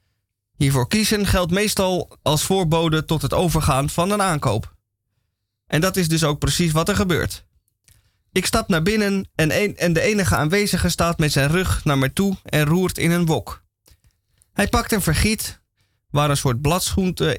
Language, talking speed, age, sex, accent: Dutch, 175 wpm, 20-39, male, Dutch